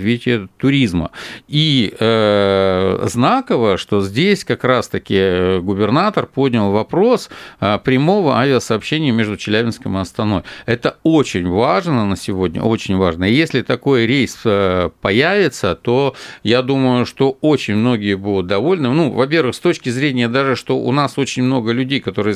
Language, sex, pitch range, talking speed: Russian, male, 105-135 Hz, 135 wpm